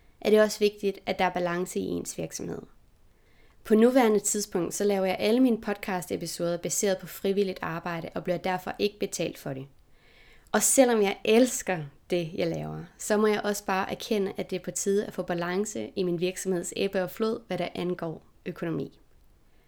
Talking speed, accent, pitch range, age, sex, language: 190 wpm, Danish, 180-215 Hz, 20-39, female, English